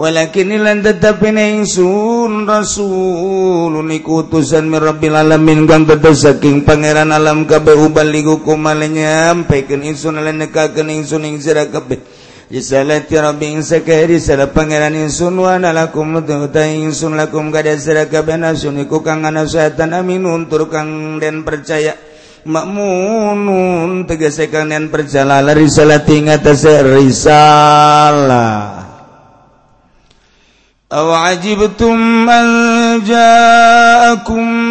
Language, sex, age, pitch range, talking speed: Indonesian, male, 50-69, 155-185 Hz, 95 wpm